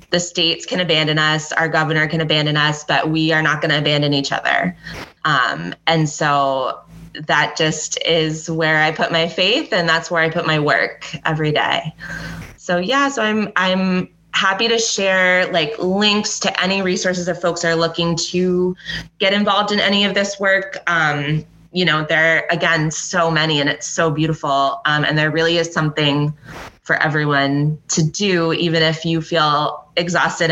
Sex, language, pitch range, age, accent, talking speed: female, English, 155-180 Hz, 20-39, American, 175 wpm